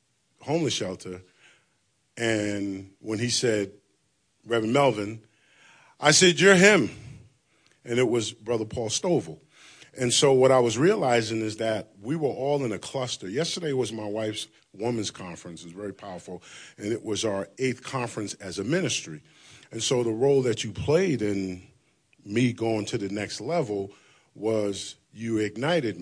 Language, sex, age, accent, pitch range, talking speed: English, male, 40-59, American, 105-140 Hz, 155 wpm